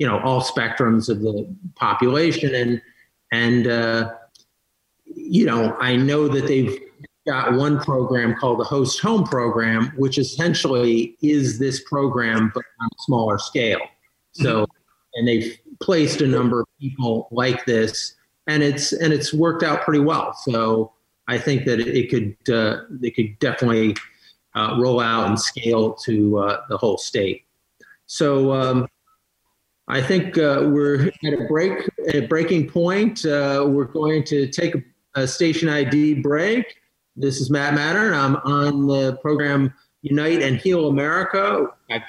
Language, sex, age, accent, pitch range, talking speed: English, male, 40-59, American, 120-150 Hz, 155 wpm